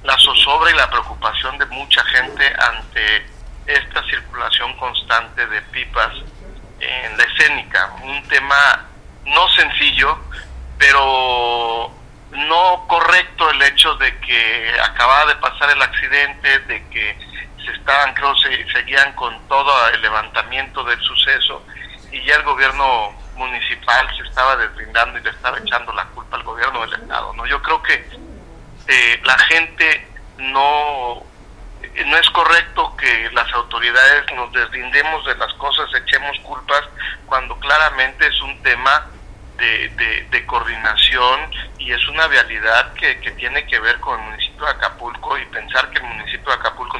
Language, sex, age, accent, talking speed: Spanish, male, 50-69, Mexican, 145 wpm